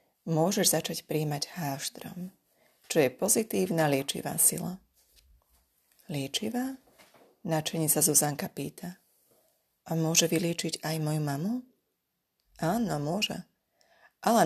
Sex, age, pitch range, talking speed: female, 30-49, 155-215 Hz, 95 wpm